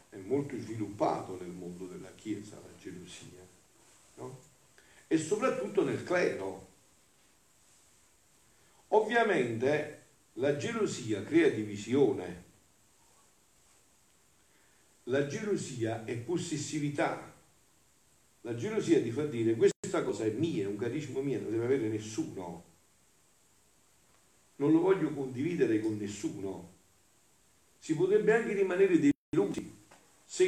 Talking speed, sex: 105 wpm, male